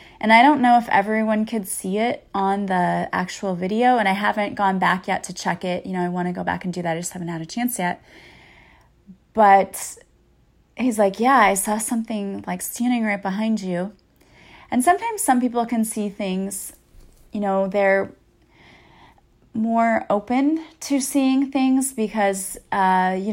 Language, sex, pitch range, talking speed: English, female, 185-225 Hz, 175 wpm